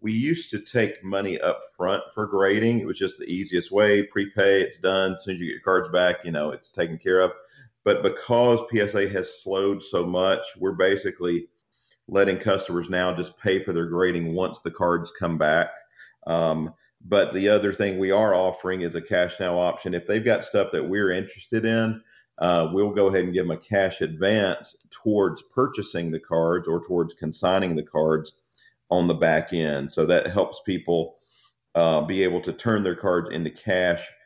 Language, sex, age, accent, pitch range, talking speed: English, male, 40-59, American, 80-95 Hz, 195 wpm